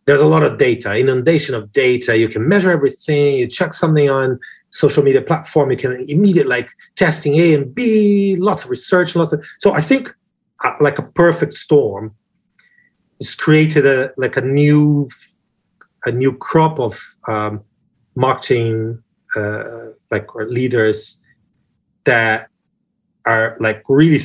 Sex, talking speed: male, 150 wpm